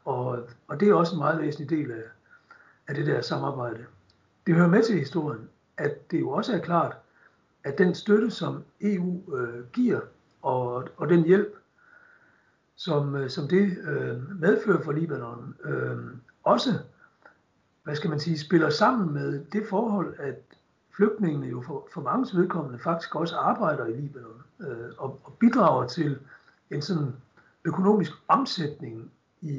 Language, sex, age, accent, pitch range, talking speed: Danish, male, 60-79, native, 135-195 Hz, 155 wpm